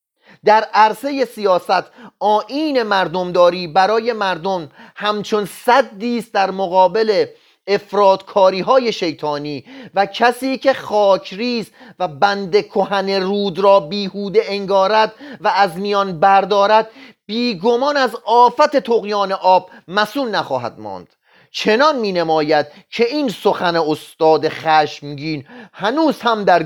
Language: Persian